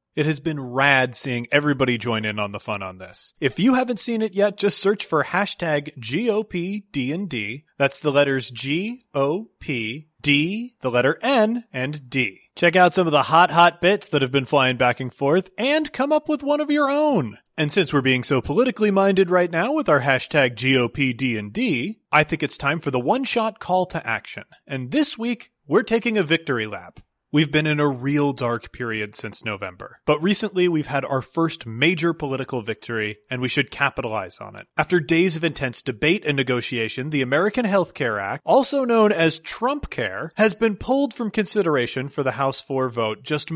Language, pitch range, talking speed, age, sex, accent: English, 130-195 Hz, 190 wpm, 30-49, male, American